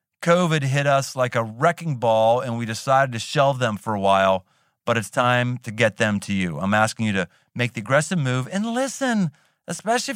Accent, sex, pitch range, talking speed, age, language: American, male, 115-165 Hz, 205 wpm, 40-59, English